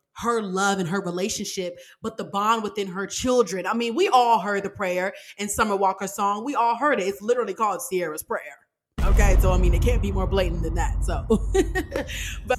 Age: 20-39